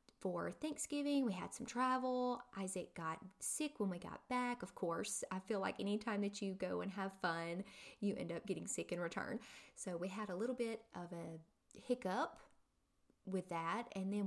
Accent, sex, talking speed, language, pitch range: American, female, 195 wpm, English, 170-230 Hz